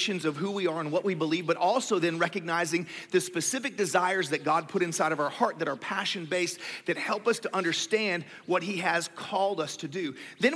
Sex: male